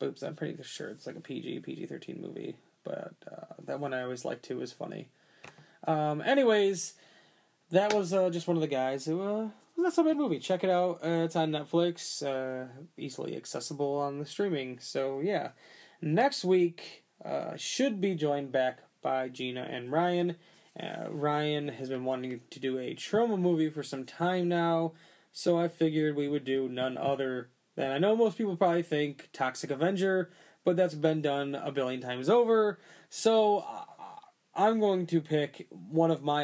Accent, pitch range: American, 130-175 Hz